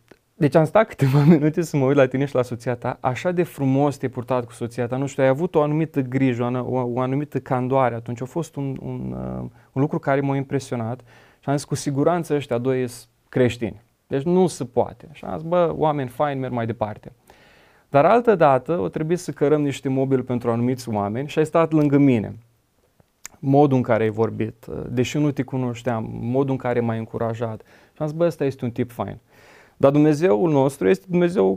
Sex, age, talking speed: male, 20-39, 205 wpm